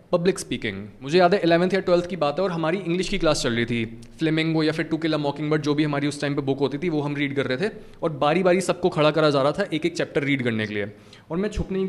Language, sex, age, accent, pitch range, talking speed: Hindi, male, 20-39, native, 145-195 Hz, 315 wpm